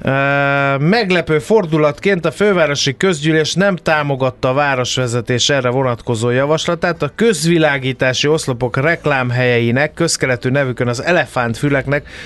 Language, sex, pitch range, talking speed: Hungarian, male, 125-160 Hz, 105 wpm